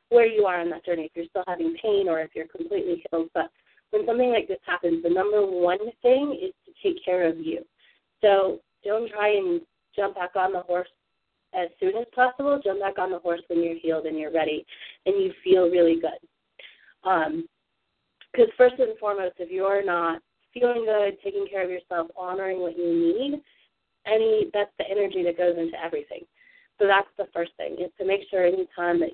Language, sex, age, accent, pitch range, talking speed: English, female, 30-49, American, 170-240 Hz, 200 wpm